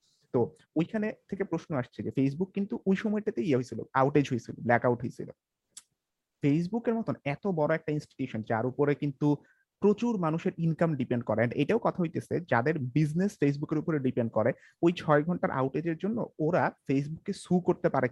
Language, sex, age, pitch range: Bengali, male, 30-49, 130-165 Hz